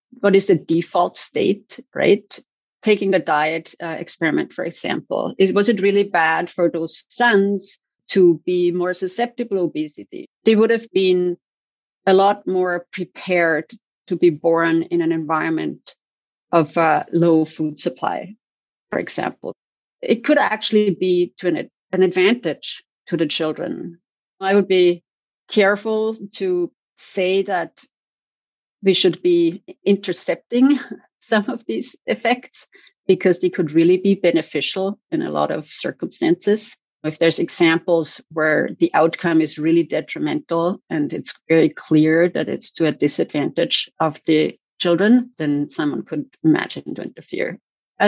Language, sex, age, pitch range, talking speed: English, female, 40-59, 165-205 Hz, 140 wpm